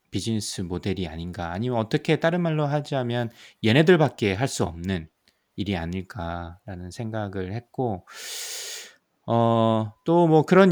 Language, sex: Korean, male